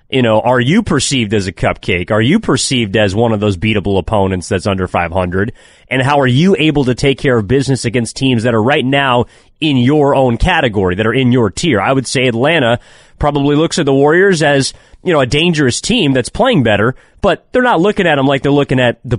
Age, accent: 30-49, American